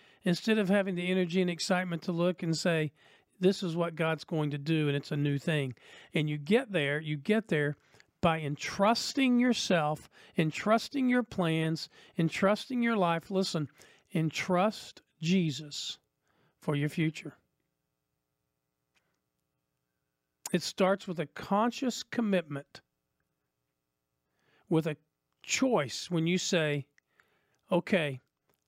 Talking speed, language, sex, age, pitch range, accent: 120 wpm, English, male, 50-69, 140-190 Hz, American